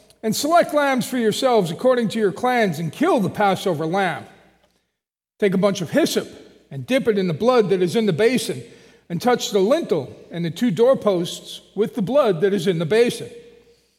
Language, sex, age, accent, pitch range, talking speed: English, male, 40-59, American, 175-240 Hz, 195 wpm